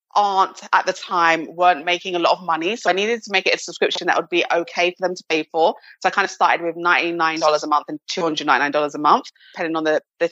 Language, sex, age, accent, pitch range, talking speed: English, female, 30-49, British, 165-205 Hz, 275 wpm